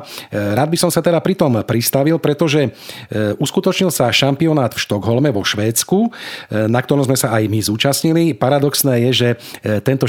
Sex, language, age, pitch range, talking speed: male, Slovak, 40-59, 110-140 Hz, 155 wpm